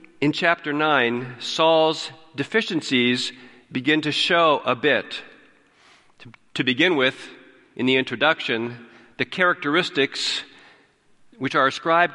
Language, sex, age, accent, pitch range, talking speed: English, male, 50-69, American, 135-180 Hz, 105 wpm